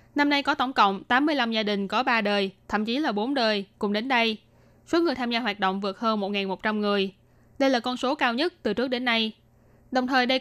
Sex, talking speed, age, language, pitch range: female, 250 wpm, 10-29, Vietnamese, 210-270 Hz